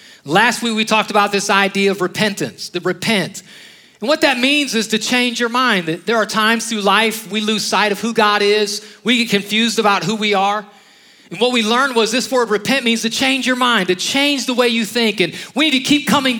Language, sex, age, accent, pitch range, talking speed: English, male, 40-59, American, 195-235 Hz, 235 wpm